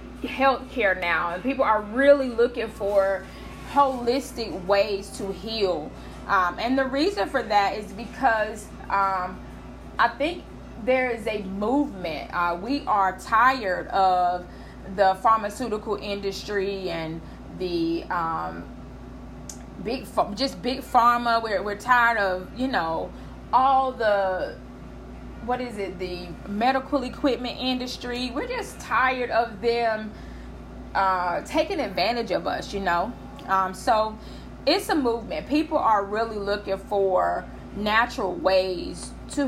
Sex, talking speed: female, 125 wpm